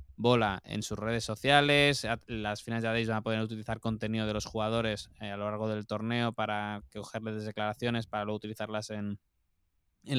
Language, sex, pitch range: Spanish, male, 105-120 Hz